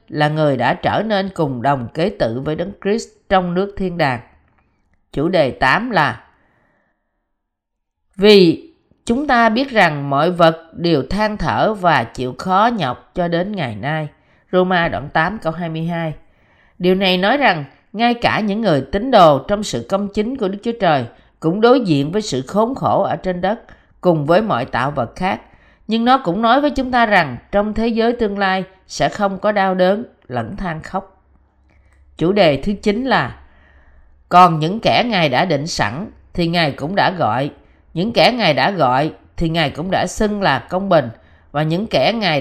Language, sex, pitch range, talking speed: Vietnamese, female, 150-205 Hz, 185 wpm